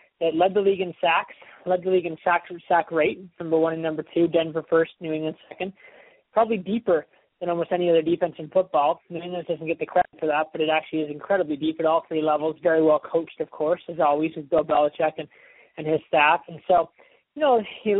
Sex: male